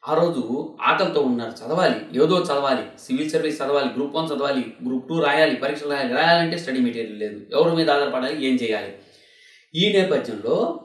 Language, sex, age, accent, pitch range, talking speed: Telugu, male, 20-39, native, 125-160 Hz, 160 wpm